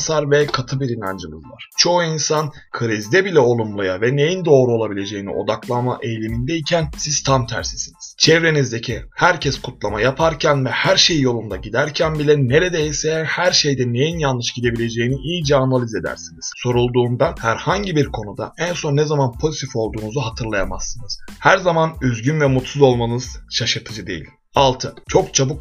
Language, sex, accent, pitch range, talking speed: Turkish, male, native, 115-150 Hz, 140 wpm